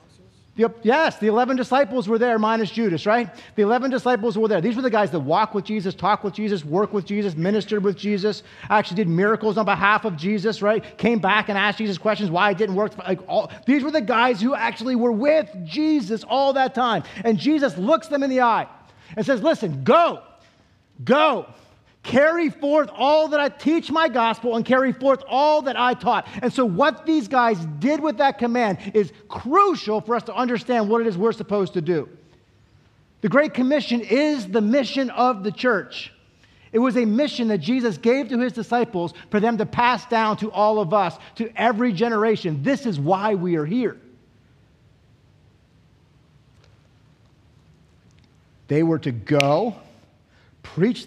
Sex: male